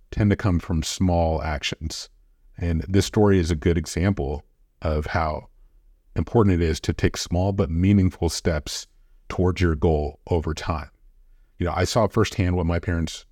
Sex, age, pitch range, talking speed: male, 30-49, 80-100 Hz, 165 wpm